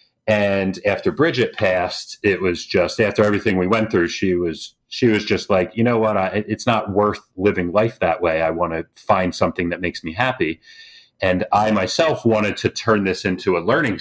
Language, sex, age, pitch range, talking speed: English, male, 40-59, 90-110 Hz, 205 wpm